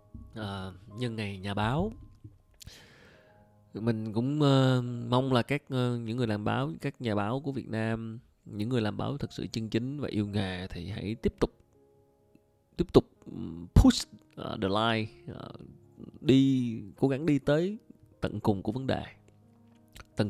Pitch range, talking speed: 105-130 Hz, 165 wpm